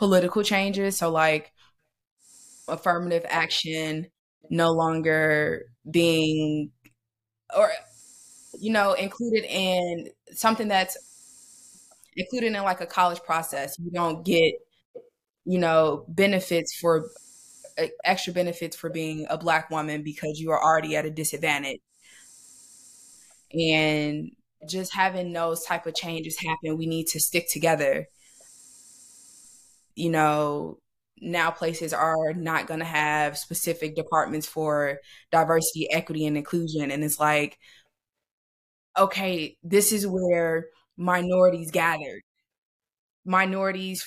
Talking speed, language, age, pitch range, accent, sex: 110 wpm, English, 20-39, 155-190 Hz, American, female